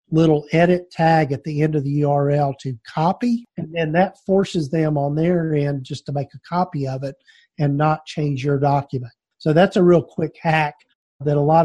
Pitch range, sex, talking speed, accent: 145-165 Hz, male, 205 wpm, American